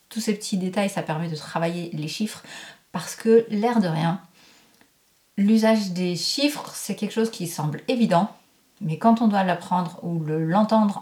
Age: 30-49